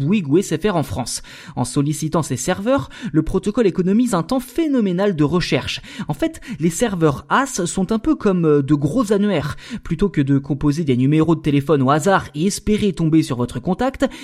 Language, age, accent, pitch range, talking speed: French, 20-39, French, 150-225 Hz, 190 wpm